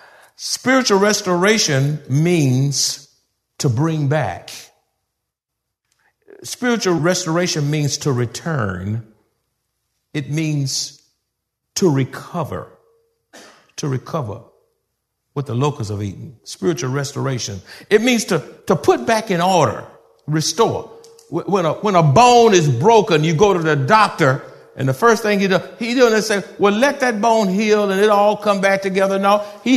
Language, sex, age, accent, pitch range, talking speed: English, male, 60-79, American, 145-210 Hz, 135 wpm